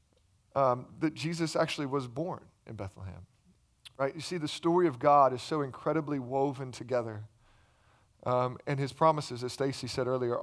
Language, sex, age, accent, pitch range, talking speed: English, male, 40-59, American, 130-195 Hz, 160 wpm